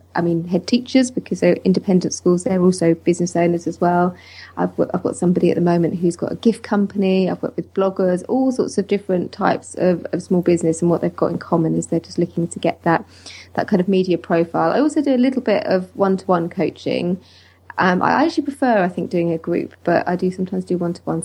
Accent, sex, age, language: British, female, 20-39, English